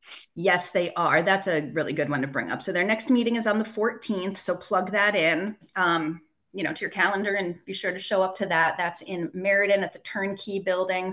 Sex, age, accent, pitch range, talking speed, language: female, 30-49, American, 170-220 Hz, 235 wpm, English